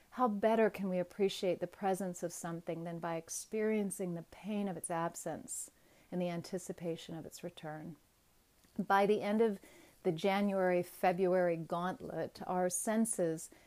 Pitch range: 175-205 Hz